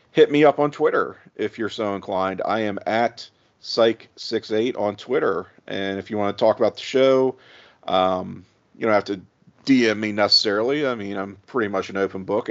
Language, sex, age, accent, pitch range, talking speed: English, male, 40-59, American, 100-125 Hz, 190 wpm